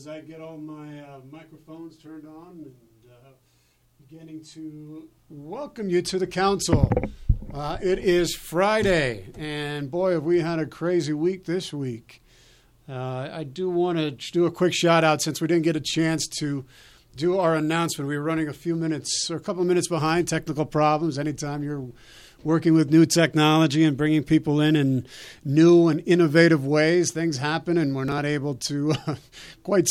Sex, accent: male, American